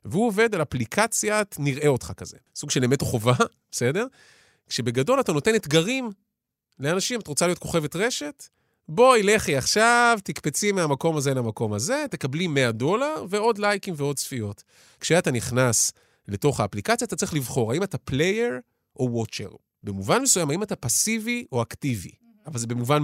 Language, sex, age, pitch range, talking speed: Hebrew, male, 30-49, 115-180 Hz, 155 wpm